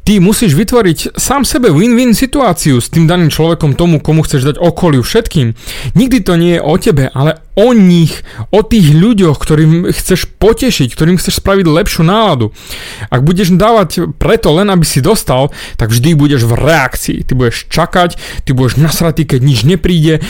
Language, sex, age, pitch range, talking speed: Slovak, male, 30-49, 145-190 Hz, 175 wpm